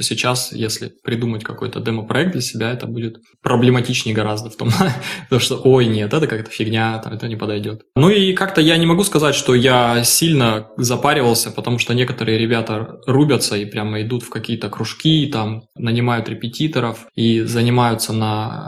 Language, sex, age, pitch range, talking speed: Russian, male, 20-39, 110-130 Hz, 165 wpm